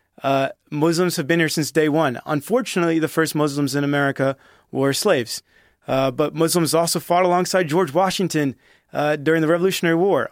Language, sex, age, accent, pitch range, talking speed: English, male, 30-49, American, 145-170 Hz, 170 wpm